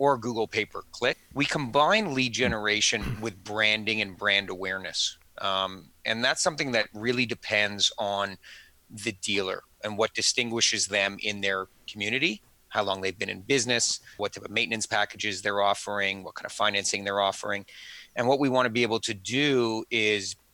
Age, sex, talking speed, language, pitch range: 30-49, male, 165 wpm, English, 100-125 Hz